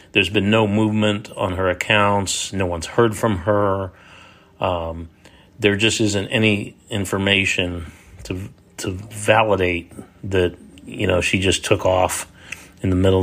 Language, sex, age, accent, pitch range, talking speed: English, male, 40-59, American, 90-100 Hz, 140 wpm